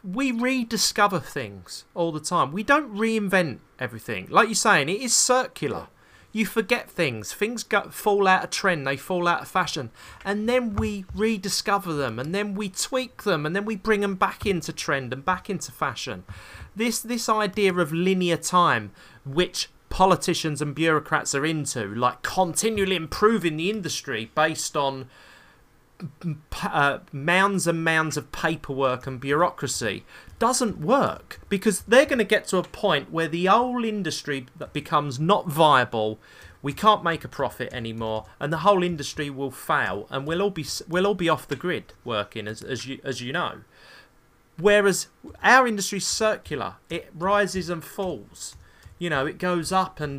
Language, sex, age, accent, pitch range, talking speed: English, male, 30-49, British, 140-205 Hz, 165 wpm